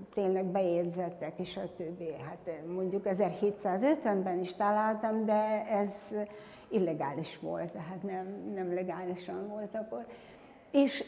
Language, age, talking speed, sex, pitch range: Hungarian, 60-79, 115 wpm, female, 185-245 Hz